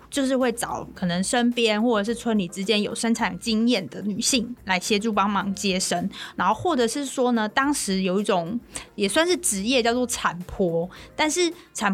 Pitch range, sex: 195-245 Hz, female